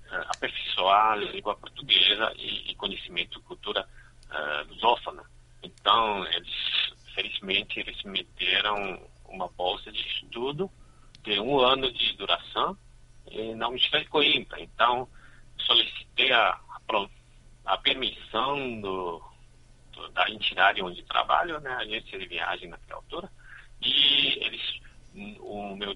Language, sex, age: Chinese, male, 50-69